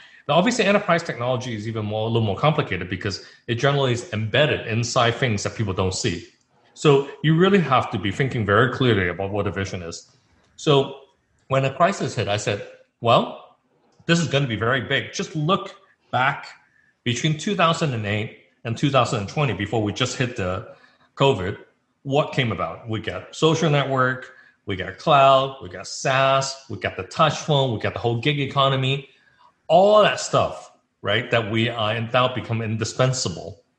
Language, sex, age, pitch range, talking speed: English, male, 30-49, 105-135 Hz, 175 wpm